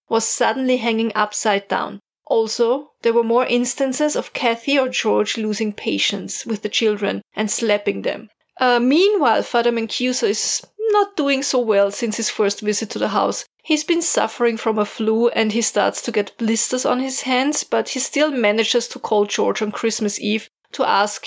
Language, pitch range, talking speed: English, 210-245 Hz, 185 wpm